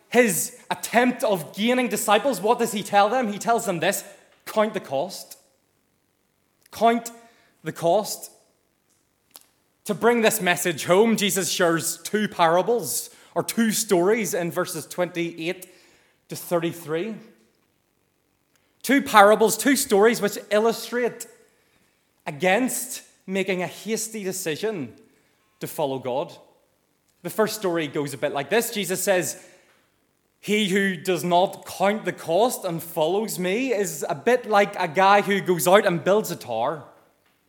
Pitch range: 180-225 Hz